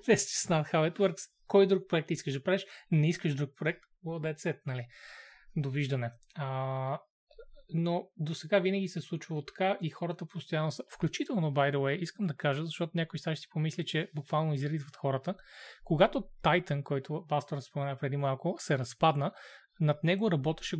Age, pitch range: 20-39, 145-180 Hz